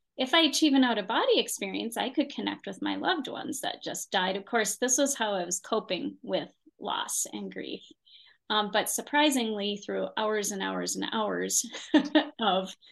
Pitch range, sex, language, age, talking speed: 190-235 Hz, female, English, 30-49, 175 wpm